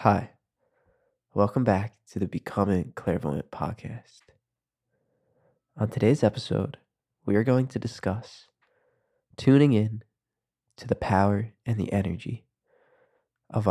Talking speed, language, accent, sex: 110 wpm, English, American, male